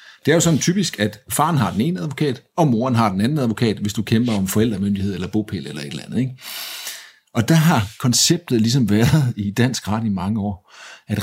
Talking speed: 225 wpm